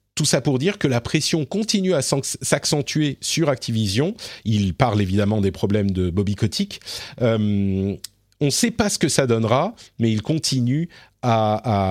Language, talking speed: French, 170 wpm